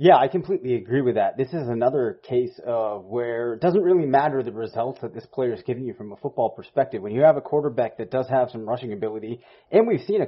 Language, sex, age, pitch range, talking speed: English, male, 30-49, 120-145 Hz, 250 wpm